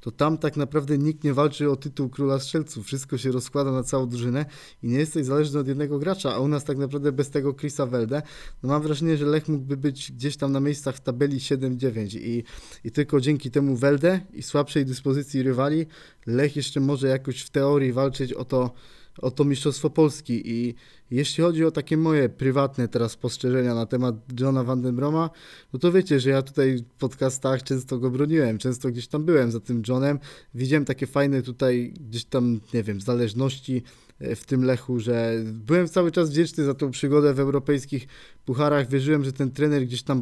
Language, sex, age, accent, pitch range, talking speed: Polish, male, 20-39, native, 130-145 Hz, 195 wpm